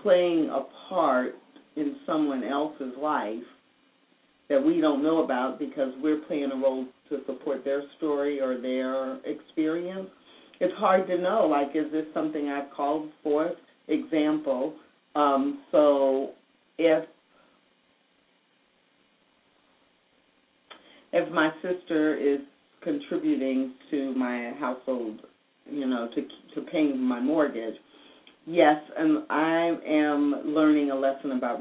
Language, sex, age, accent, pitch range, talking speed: English, female, 40-59, American, 135-175 Hz, 120 wpm